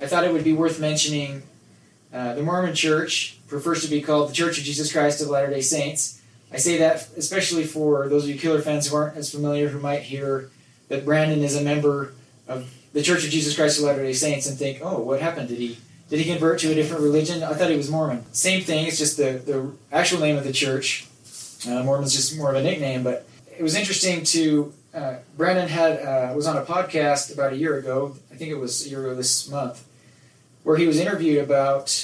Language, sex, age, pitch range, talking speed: English, male, 20-39, 135-155 Hz, 230 wpm